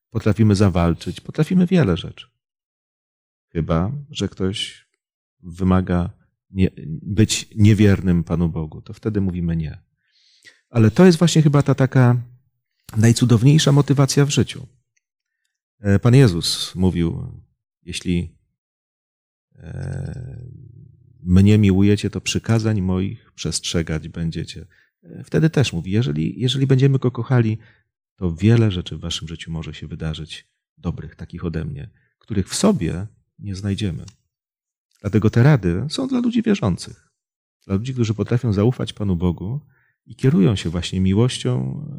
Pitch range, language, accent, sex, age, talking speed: 90-125 Hz, Polish, native, male, 40-59, 120 wpm